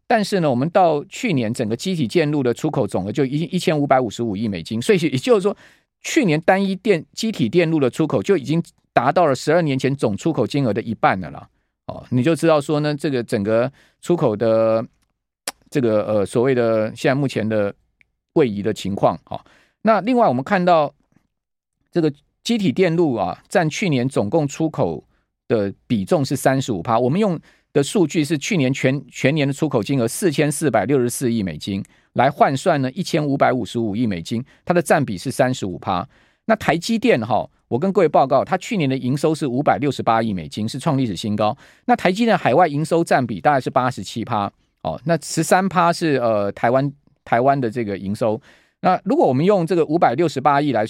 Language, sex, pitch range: Chinese, male, 120-170 Hz